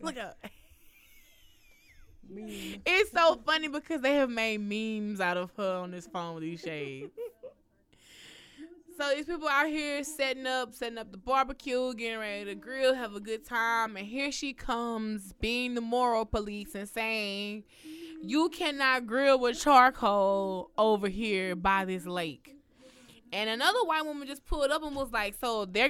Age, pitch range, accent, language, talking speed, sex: 20-39, 210-275 Hz, American, English, 160 wpm, female